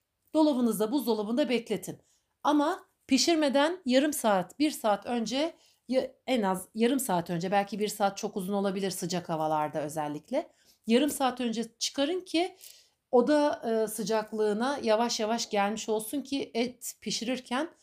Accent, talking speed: native, 130 wpm